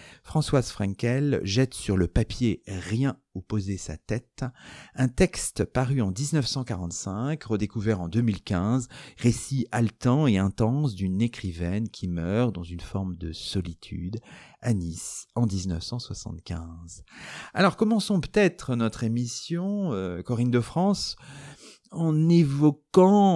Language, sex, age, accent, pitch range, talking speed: French, male, 40-59, French, 95-140 Hz, 115 wpm